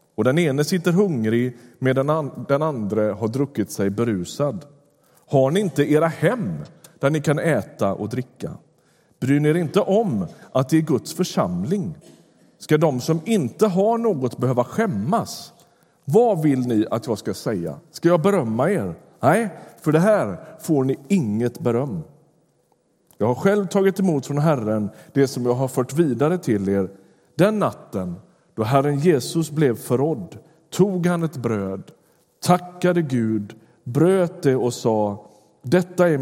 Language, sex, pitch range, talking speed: Swedish, male, 120-165 Hz, 155 wpm